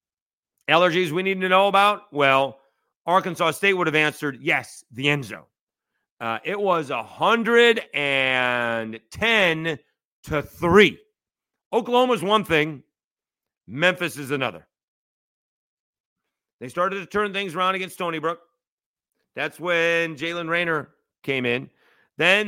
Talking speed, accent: 115 wpm, American